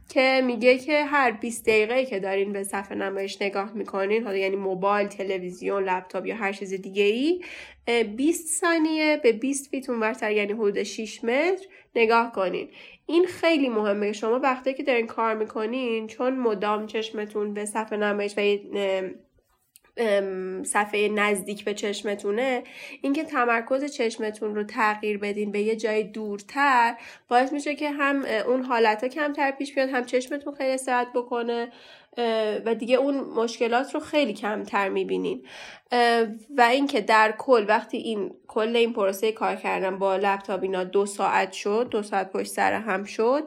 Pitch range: 210-265 Hz